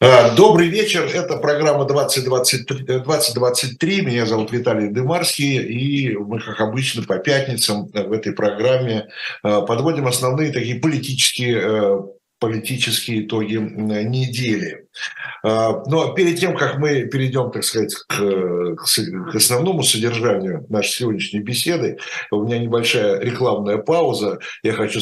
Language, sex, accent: Russian, male, native